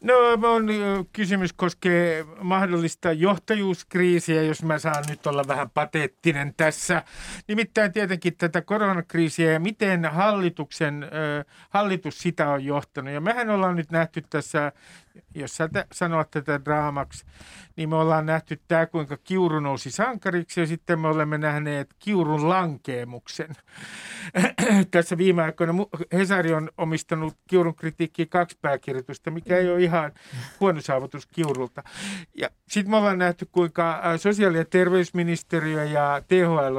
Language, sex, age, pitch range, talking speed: Finnish, male, 50-69, 150-185 Hz, 120 wpm